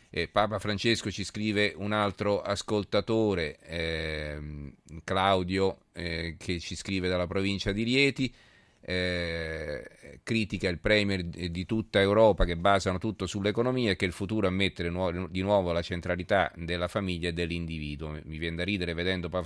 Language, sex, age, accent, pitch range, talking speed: Italian, male, 40-59, native, 85-105 Hz, 150 wpm